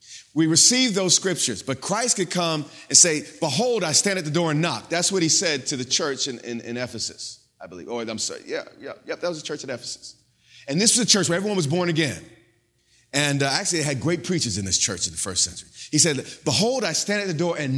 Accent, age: American, 30-49